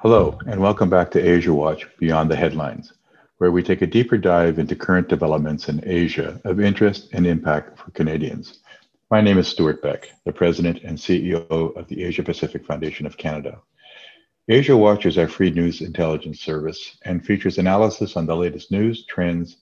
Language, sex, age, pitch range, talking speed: English, male, 50-69, 80-100 Hz, 180 wpm